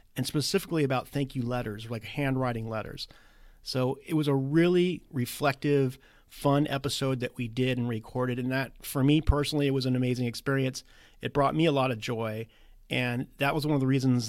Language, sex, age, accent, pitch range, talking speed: English, male, 40-59, American, 125-150 Hz, 195 wpm